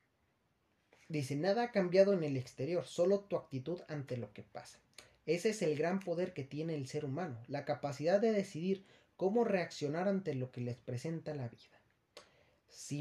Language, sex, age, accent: Spanish, male, 40-59, Mexican